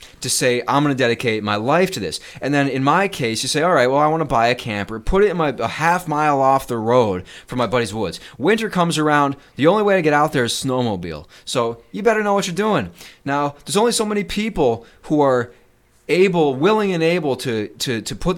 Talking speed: 240 wpm